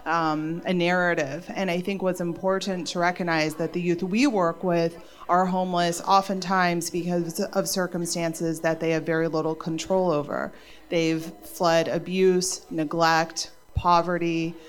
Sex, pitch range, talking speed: female, 165-190 Hz, 140 wpm